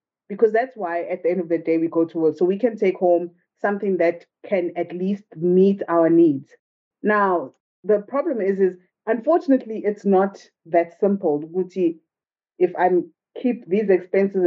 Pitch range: 165-195 Hz